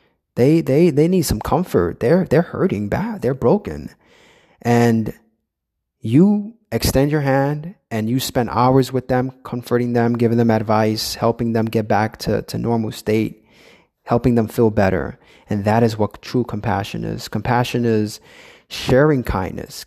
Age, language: 20-39, English